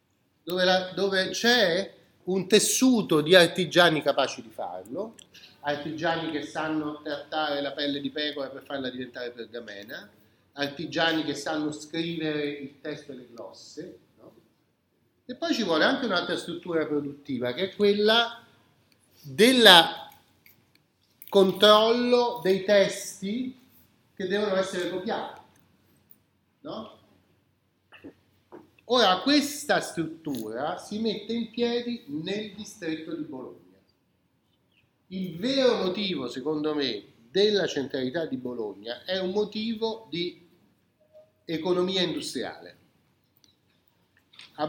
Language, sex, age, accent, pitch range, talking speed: Italian, male, 40-59, native, 145-210 Hz, 105 wpm